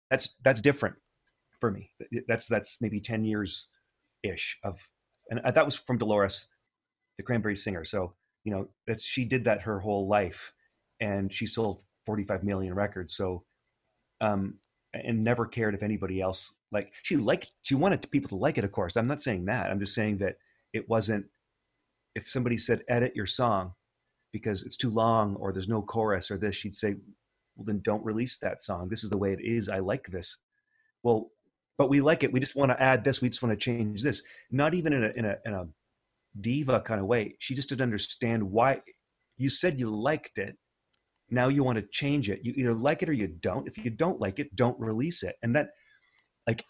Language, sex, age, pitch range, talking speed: English, male, 30-49, 100-125 Hz, 205 wpm